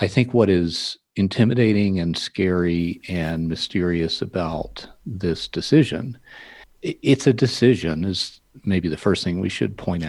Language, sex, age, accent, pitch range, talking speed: English, male, 50-69, American, 85-105 Hz, 135 wpm